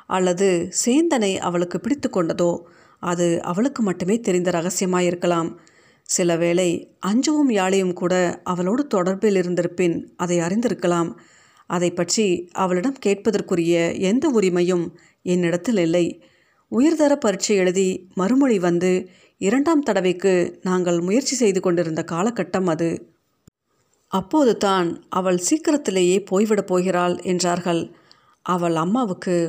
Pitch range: 175-210 Hz